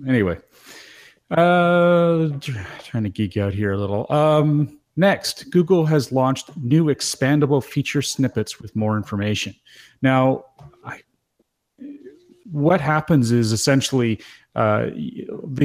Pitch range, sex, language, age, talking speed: 105-135 Hz, male, English, 40-59, 105 wpm